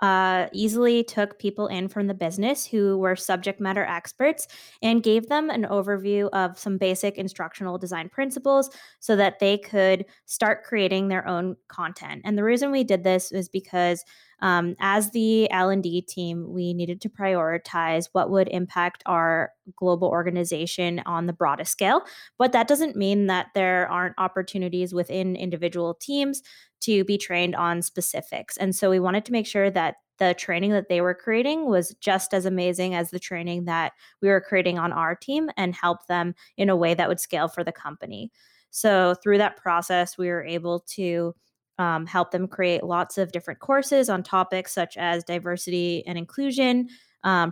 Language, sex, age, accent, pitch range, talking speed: English, female, 20-39, American, 175-205 Hz, 175 wpm